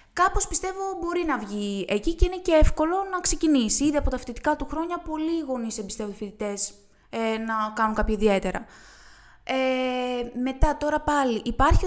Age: 20-39